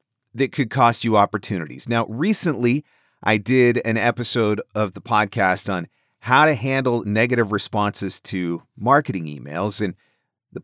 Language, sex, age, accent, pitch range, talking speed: English, male, 30-49, American, 105-140 Hz, 140 wpm